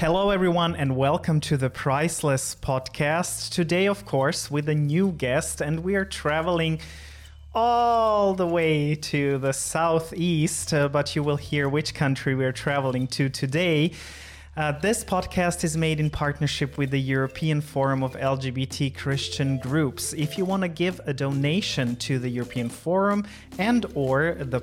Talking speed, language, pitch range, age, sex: 160 wpm, English, 135-170 Hz, 30-49, male